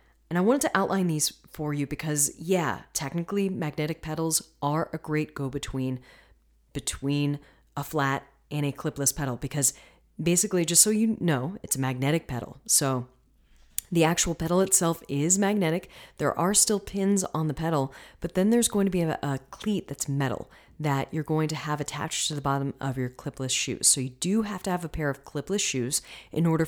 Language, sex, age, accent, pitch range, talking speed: English, female, 30-49, American, 135-170 Hz, 195 wpm